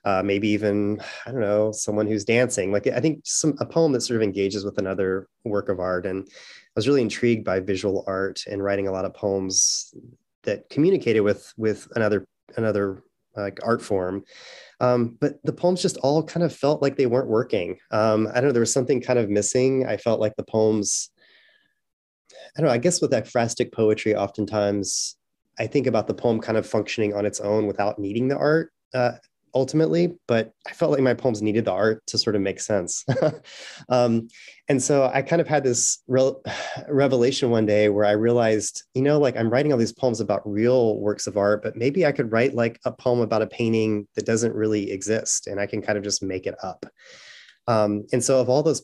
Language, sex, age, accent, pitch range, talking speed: English, male, 30-49, American, 105-125 Hz, 215 wpm